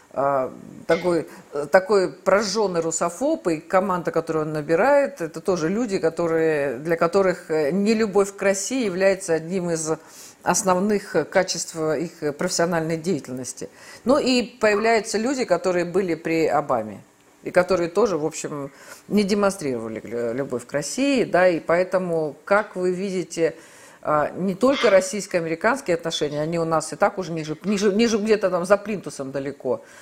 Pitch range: 160-200 Hz